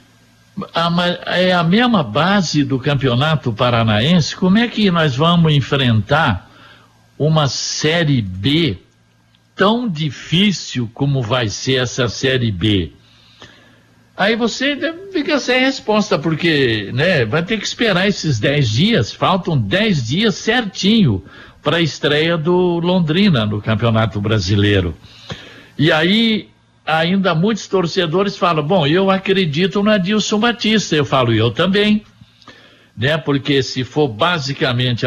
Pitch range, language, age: 125-195 Hz, Portuguese, 60-79